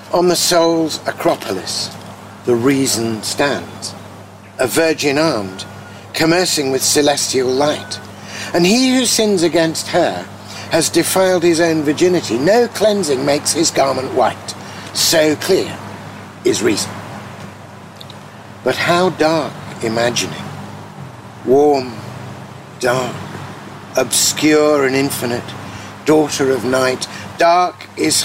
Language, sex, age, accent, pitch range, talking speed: English, male, 50-69, British, 105-170 Hz, 105 wpm